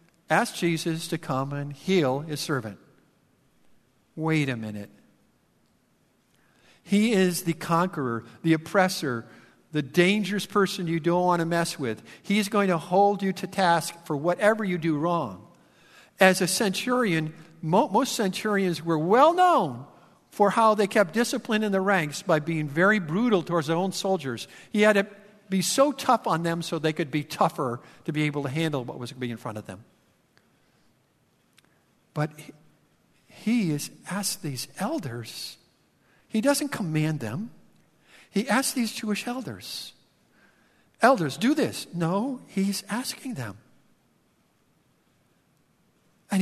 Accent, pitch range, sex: American, 145-205 Hz, male